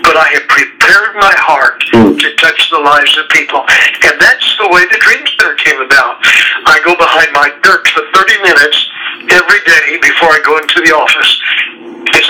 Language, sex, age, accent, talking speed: English, male, 60-79, American, 180 wpm